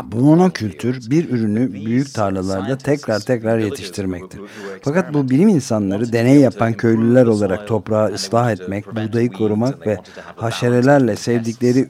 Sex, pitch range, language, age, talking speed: male, 110-135 Hz, Turkish, 50-69, 125 wpm